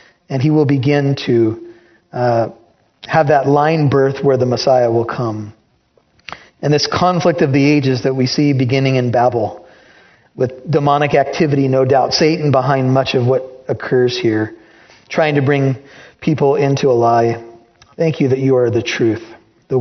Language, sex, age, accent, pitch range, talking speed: English, male, 40-59, American, 120-140 Hz, 165 wpm